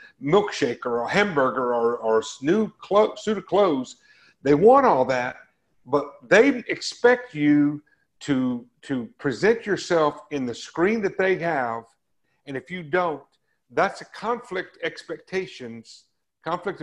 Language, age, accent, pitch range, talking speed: English, 50-69, American, 130-190 Hz, 140 wpm